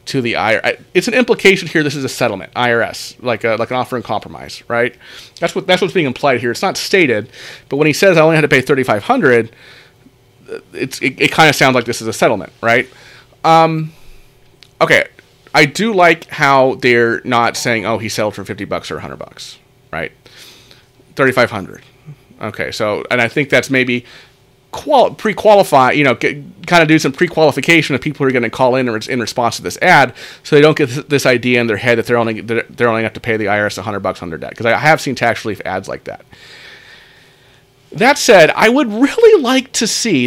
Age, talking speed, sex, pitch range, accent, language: 30-49, 220 wpm, male, 120-160 Hz, American, English